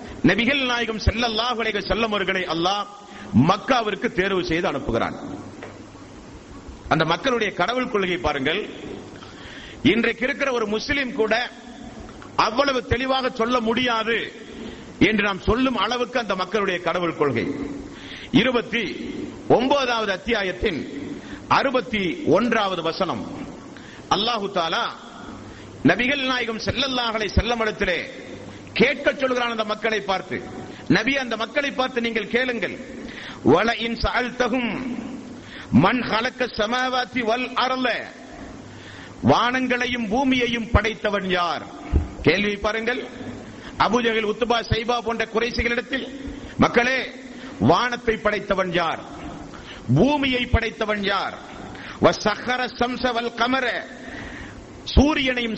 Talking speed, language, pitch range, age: 80 wpm, Tamil, 210-255 Hz, 50-69